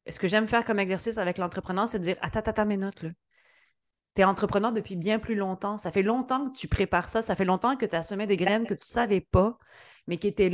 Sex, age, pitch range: female, 30-49, 180-220 Hz